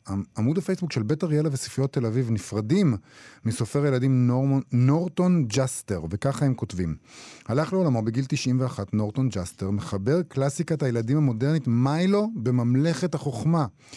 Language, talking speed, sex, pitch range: Hebrew, 130 wpm, male, 115-160 Hz